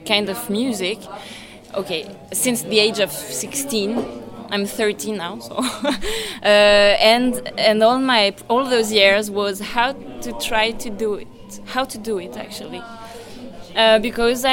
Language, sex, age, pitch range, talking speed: French, female, 20-39, 205-255 Hz, 145 wpm